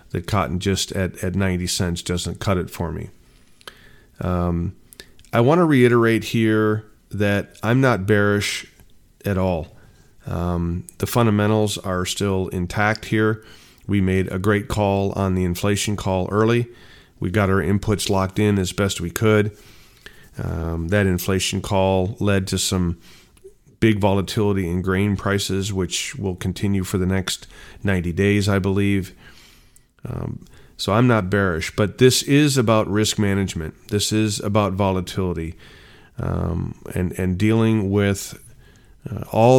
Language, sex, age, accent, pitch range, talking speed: English, male, 40-59, American, 90-105 Hz, 140 wpm